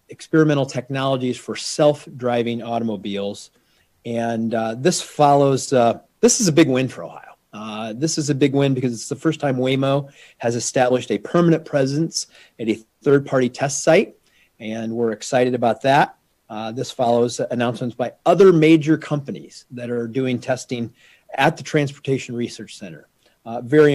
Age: 40-59